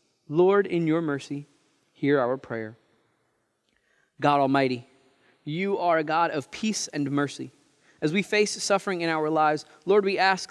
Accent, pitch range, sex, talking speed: American, 150-190 Hz, male, 155 wpm